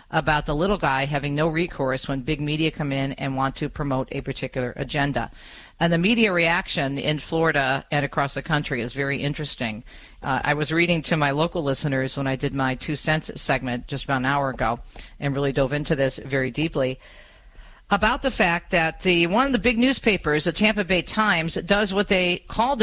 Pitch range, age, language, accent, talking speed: 135-170 Hz, 50-69, English, American, 200 wpm